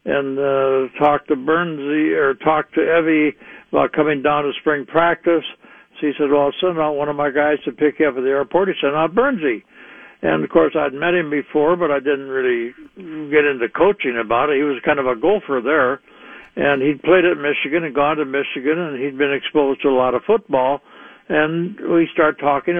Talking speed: 215 wpm